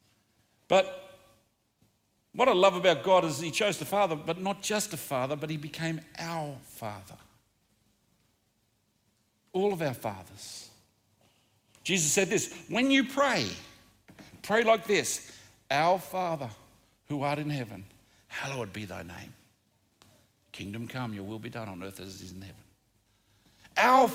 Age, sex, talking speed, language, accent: 60-79, male, 145 wpm, English, Australian